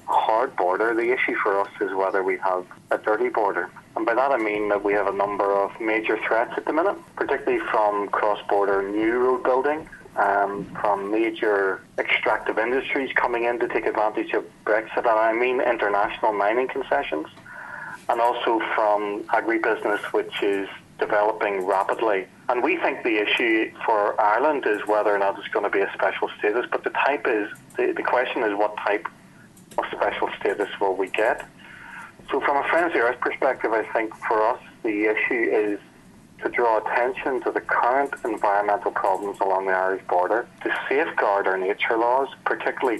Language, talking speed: English, 175 wpm